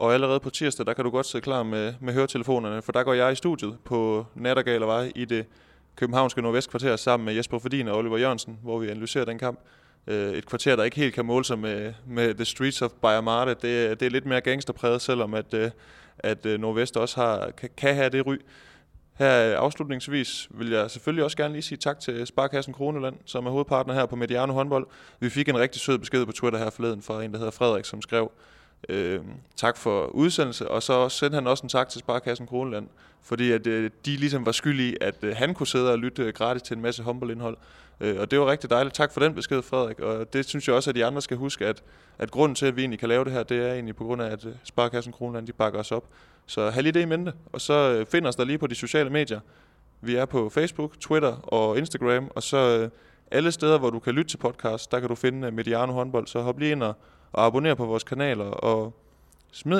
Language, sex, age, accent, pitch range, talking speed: Danish, male, 20-39, native, 115-135 Hz, 230 wpm